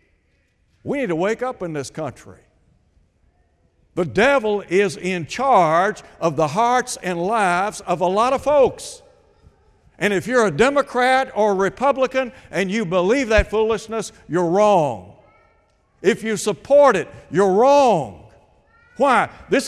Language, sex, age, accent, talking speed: English, male, 60-79, American, 140 wpm